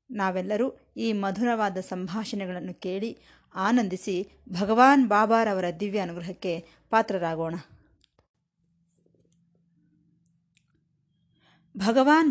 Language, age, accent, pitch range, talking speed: Kannada, 20-39, native, 170-240 Hz, 60 wpm